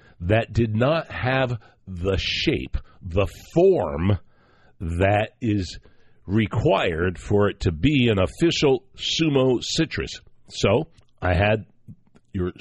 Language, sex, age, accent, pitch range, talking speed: English, male, 60-79, American, 95-120 Hz, 110 wpm